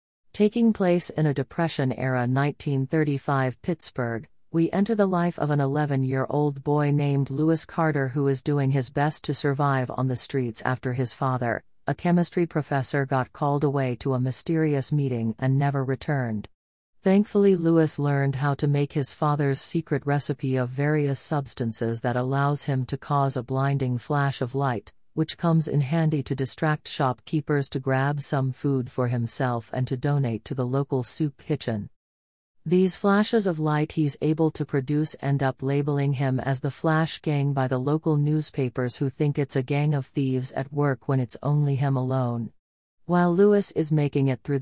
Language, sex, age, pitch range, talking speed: English, female, 40-59, 130-155 Hz, 170 wpm